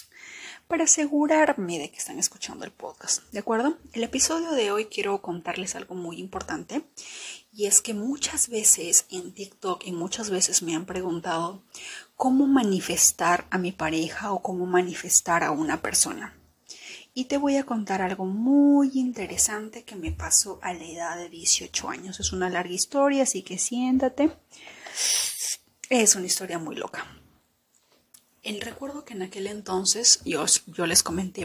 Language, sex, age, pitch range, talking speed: Spanish, female, 30-49, 180-245 Hz, 155 wpm